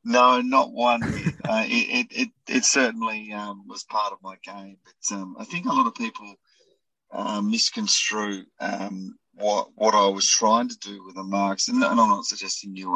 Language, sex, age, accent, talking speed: English, male, 30-49, Australian, 190 wpm